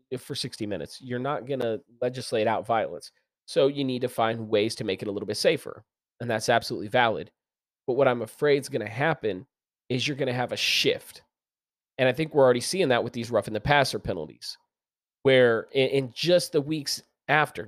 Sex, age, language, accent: male, 30-49, English, American